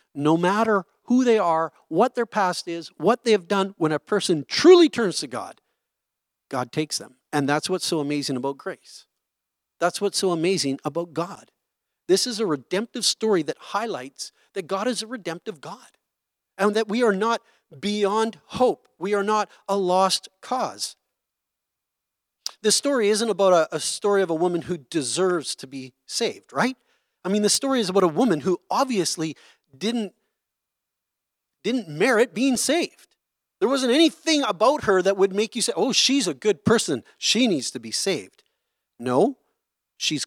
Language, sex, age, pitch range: English, male, 40-59, 150-220 Hz